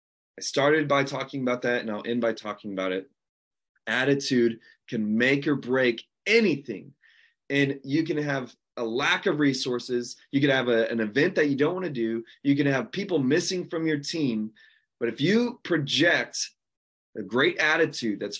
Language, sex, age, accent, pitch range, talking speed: English, male, 30-49, American, 120-155 Hz, 180 wpm